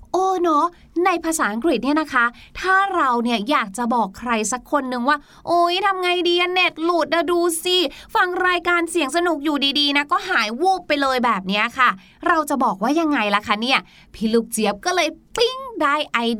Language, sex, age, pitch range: Thai, female, 20-39, 245-340 Hz